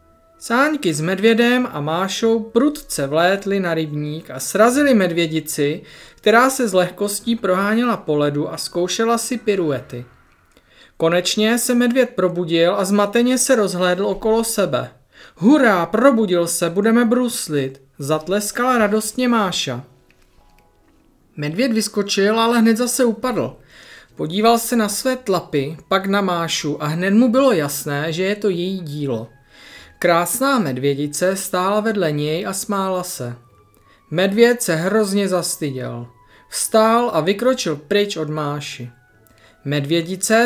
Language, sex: Czech, male